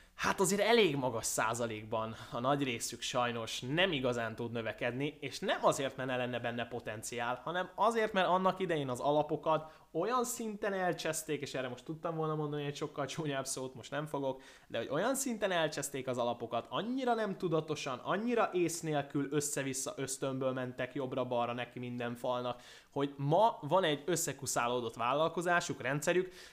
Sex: male